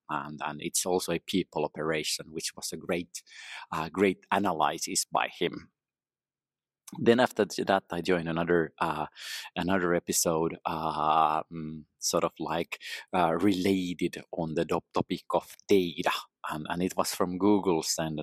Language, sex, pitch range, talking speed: English, male, 80-90 Hz, 145 wpm